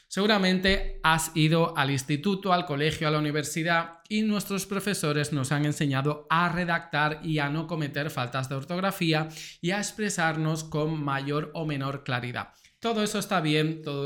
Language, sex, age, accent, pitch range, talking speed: Spanish, male, 20-39, Spanish, 150-185 Hz, 160 wpm